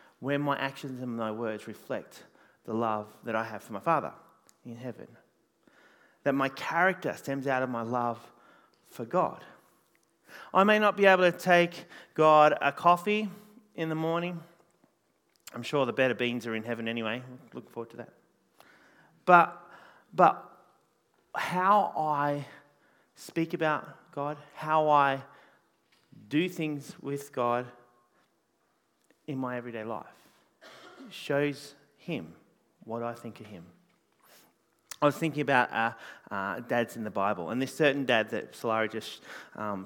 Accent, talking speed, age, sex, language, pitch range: Australian, 145 wpm, 30-49, male, English, 120-170 Hz